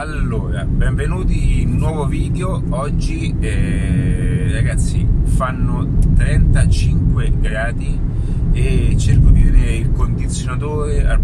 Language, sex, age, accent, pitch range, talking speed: Italian, male, 30-49, native, 105-130 Hz, 100 wpm